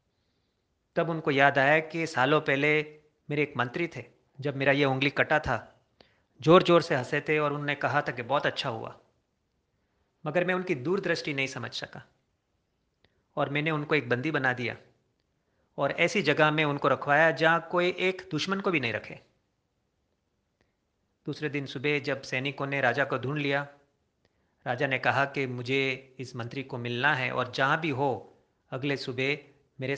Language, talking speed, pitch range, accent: Hindi, 170 wpm, 130-155 Hz, native